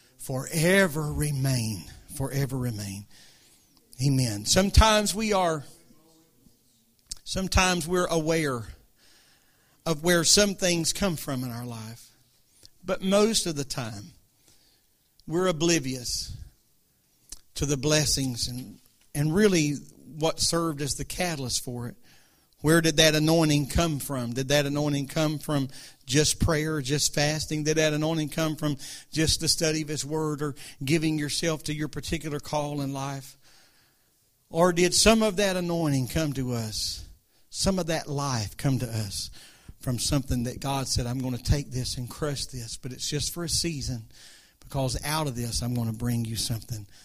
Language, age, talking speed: English, 50-69, 155 wpm